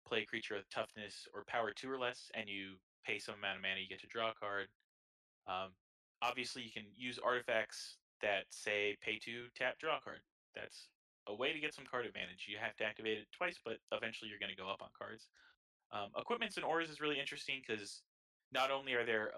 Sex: male